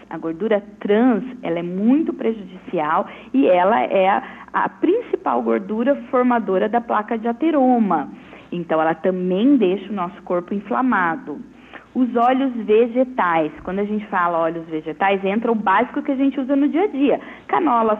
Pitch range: 185-240 Hz